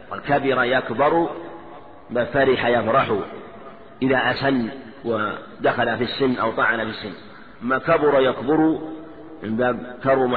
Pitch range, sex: 130-155 Hz, male